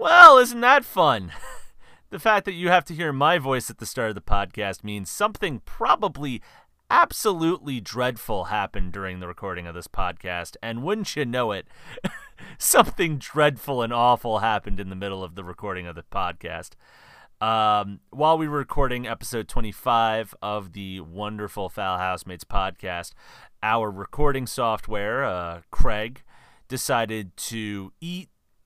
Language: English